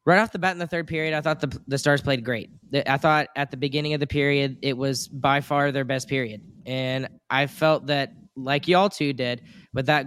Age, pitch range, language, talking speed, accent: 10-29, 135-165 Hz, English, 240 wpm, American